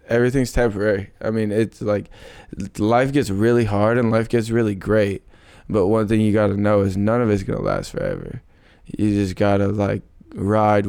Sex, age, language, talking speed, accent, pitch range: male, 20-39, English, 185 wpm, American, 105-120 Hz